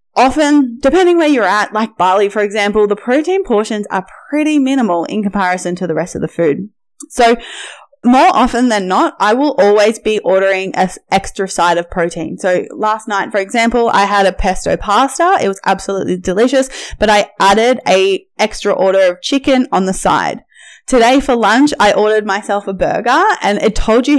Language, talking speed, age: English, 185 wpm, 10-29